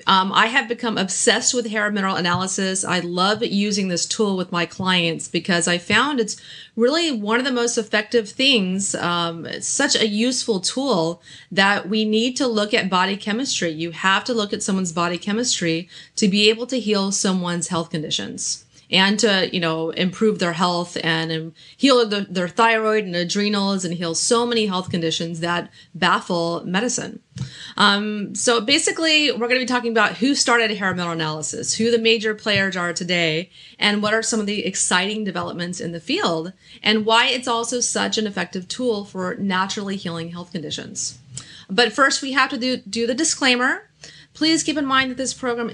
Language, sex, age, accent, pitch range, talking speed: English, female, 30-49, American, 175-235 Hz, 190 wpm